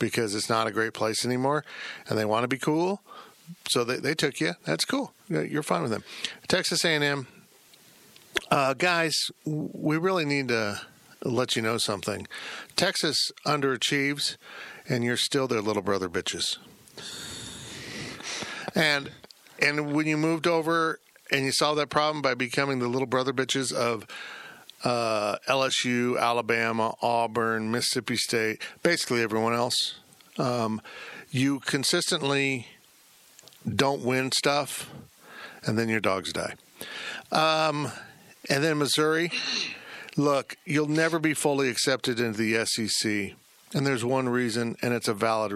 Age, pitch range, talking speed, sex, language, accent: 50-69, 115-150 Hz, 135 wpm, male, English, American